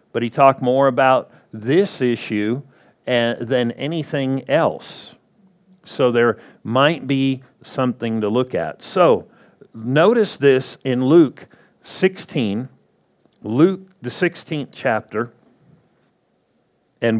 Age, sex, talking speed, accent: 50-69, male, 100 wpm, American